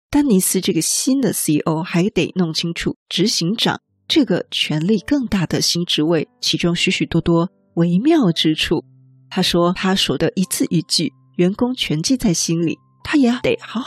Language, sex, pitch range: Chinese, female, 165-220 Hz